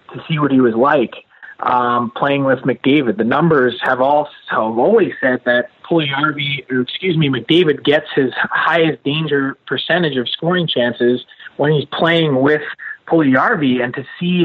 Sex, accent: male, American